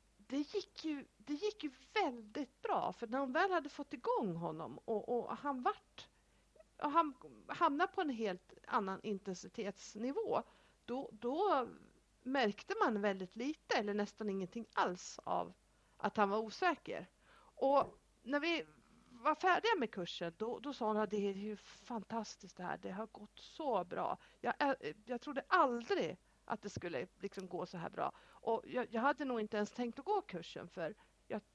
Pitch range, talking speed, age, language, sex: 205-290 Hz, 170 wpm, 50-69, Swedish, female